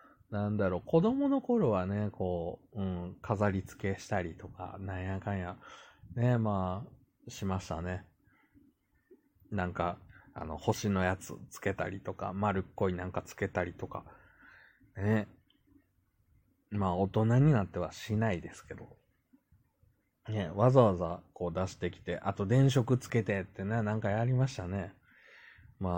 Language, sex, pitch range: Japanese, male, 95-115 Hz